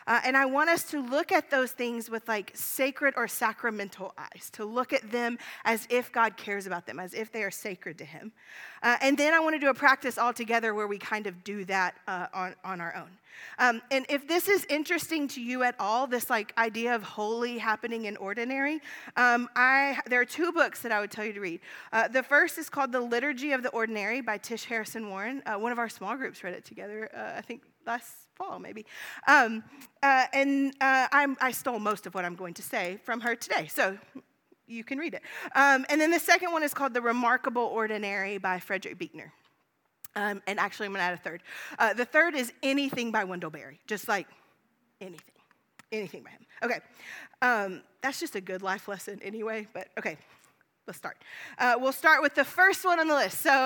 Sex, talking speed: female, 220 wpm